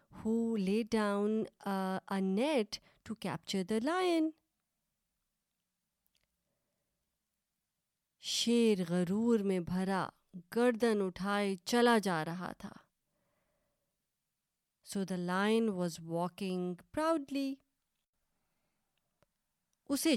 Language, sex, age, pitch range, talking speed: Urdu, female, 30-49, 180-240 Hz, 80 wpm